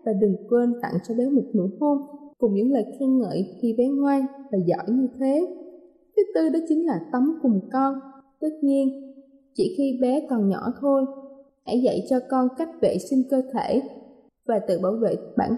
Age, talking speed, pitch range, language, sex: 20-39, 195 wpm, 220-280 Hz, Vietnamese, female